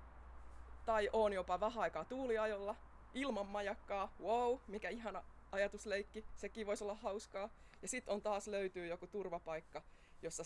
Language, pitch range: Finnish, 155-205 Hz